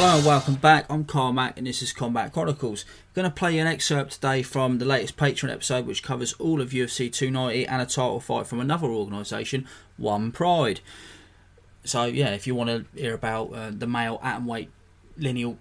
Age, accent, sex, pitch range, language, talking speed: 20-39, British, male, 115-140 Hz, English, 200 wpm